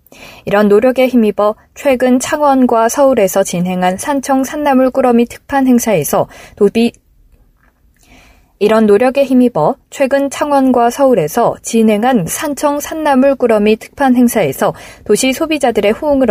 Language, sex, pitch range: Korean, female, 200-270 Hz